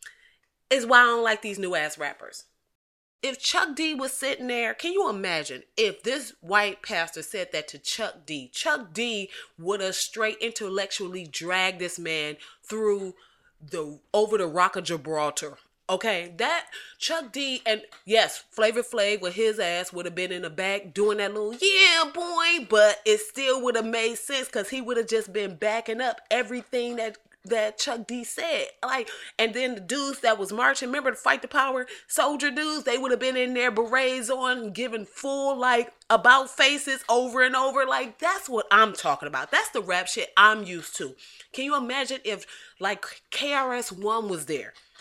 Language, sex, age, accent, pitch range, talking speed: English, female, 20-39, American, 200-270 Hz, 185 wpm